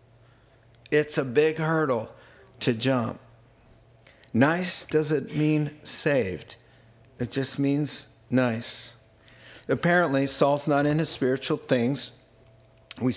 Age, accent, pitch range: 50-69, American, 120-150 Hz